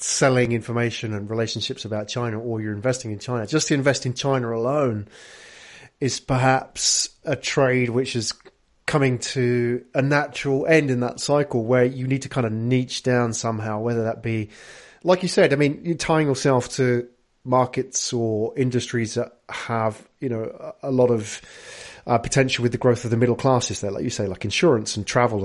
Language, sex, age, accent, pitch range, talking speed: English, male, 30-49, British, 110-130 Hz, 185 wpm